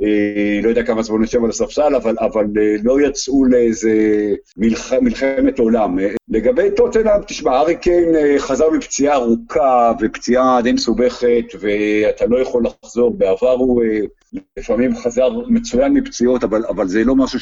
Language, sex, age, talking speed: Hebrew, male, 50-69, 140 wpm